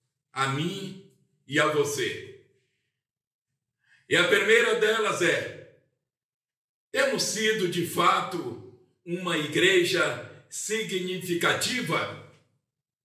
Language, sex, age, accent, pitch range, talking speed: Portuguese, male, 60-79, Brazilian, 155-260 Hz, 80 wpm